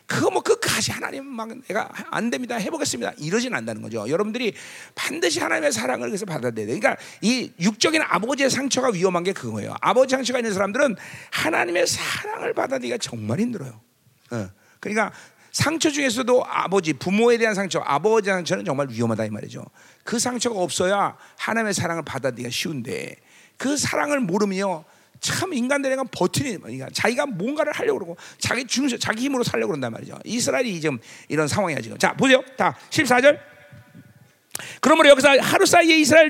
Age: 40-59